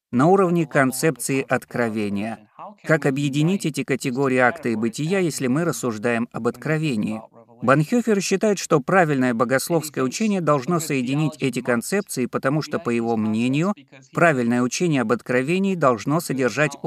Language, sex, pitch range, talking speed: Russian, male, 125-160 Hz, 130 wpm